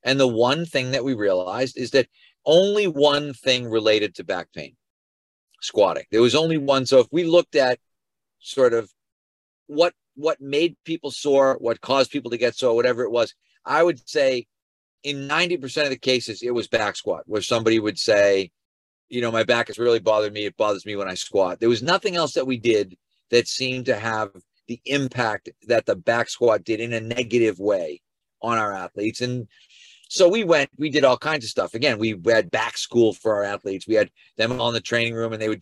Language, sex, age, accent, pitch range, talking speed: English, male, 40-59, American, 110-140 Hz, 210 wpm